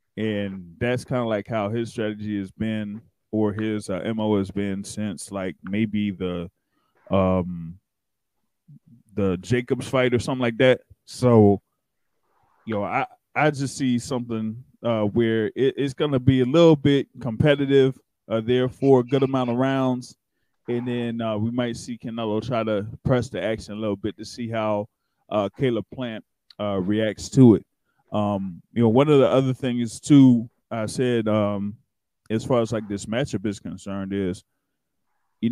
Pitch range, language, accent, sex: 105-130 Hz, English, American, male